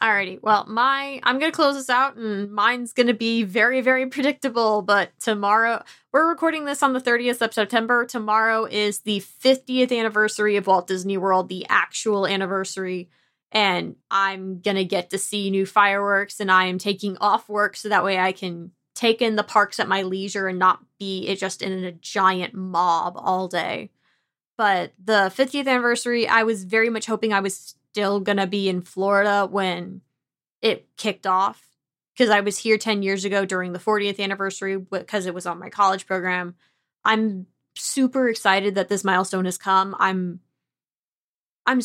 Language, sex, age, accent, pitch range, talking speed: English, female, 20-39, American, 190-230 Hz, 180 wpm